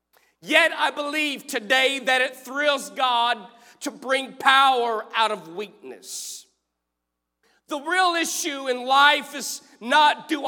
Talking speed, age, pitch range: 125 wpm, 40-59, 240-315 Hz